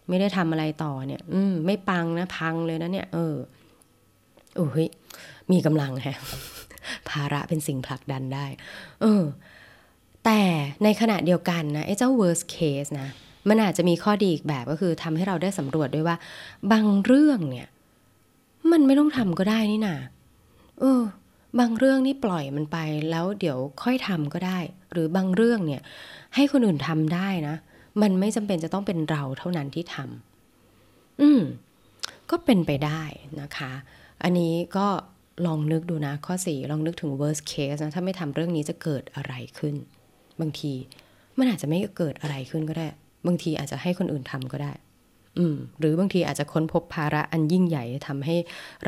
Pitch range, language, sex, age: 150-190 Hz, Thai, female, 20-39